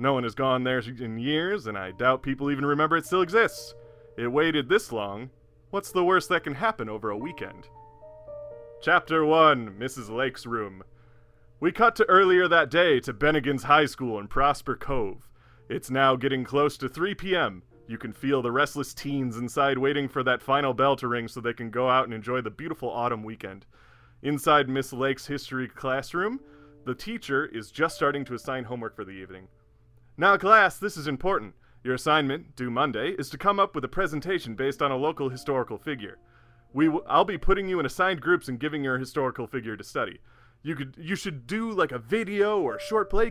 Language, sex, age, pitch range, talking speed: English, male, 30-49, 120-155 Hz, 200 wpm